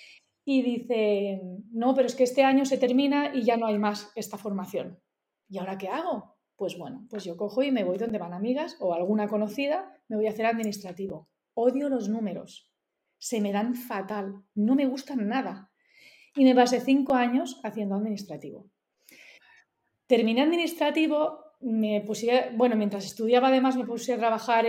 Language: Spanish